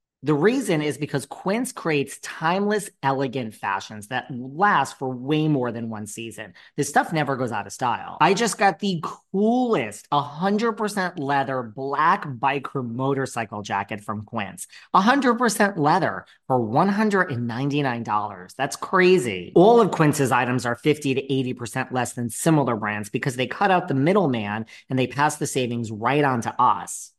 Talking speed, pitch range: 155 wpm, 120-180 Hz